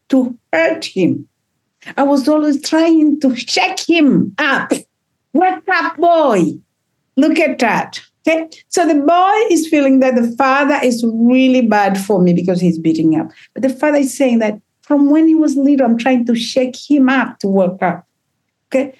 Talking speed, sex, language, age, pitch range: 175 wpm, female, English, 60-79, 200-285 Hz